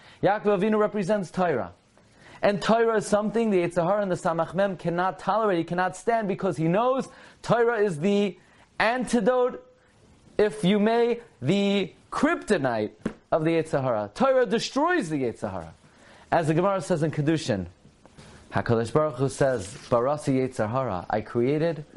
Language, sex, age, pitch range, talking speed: English, male, 30-49, 100-170 Hz, 140 wpm